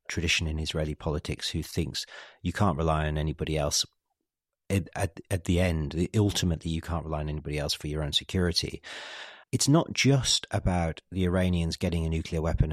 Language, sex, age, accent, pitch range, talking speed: English, male, 40-59, British, 80-105 Hz, 180 wpm